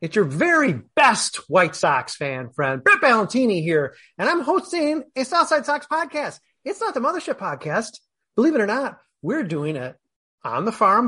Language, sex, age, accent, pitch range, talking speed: English, male, 30-49, American, 155-215 Hz, 180 wpm